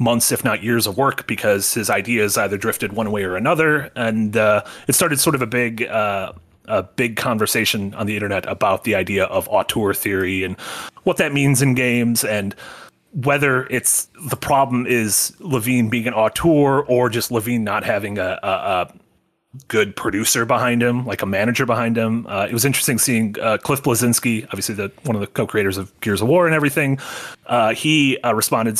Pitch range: 110-135 Hz